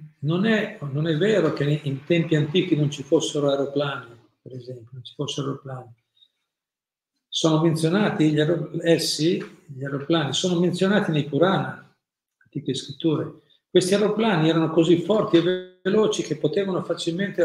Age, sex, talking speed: 50-69, male, 150 wpm